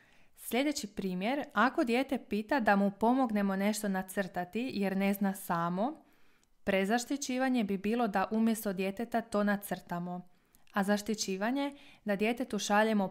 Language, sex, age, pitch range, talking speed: Croatian, female, 20-39, 190-235 Hz, 125 wpm